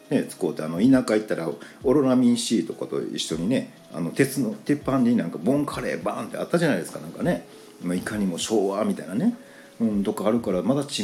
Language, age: Japanese, 40-59